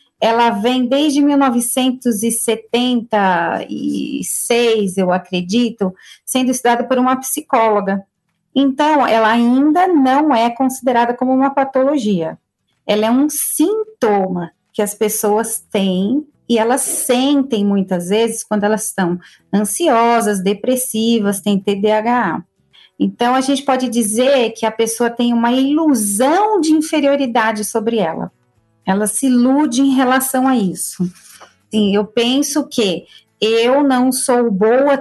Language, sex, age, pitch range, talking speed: Portuguese, female, 40-59, 210-260 Hz, 120 wpm